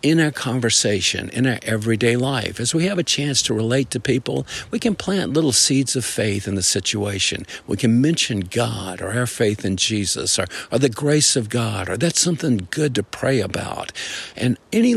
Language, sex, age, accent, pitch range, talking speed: English, male, 50-69, American, 100-135 Hz, 200 wpm